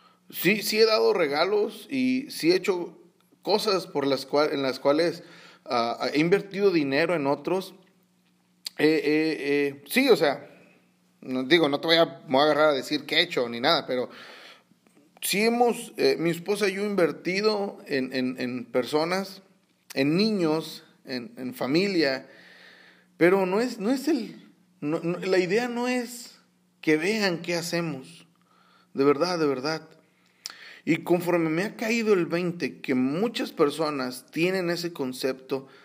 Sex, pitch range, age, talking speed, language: male, 140-190 Hz, 40-59, 160 wpm, Spanish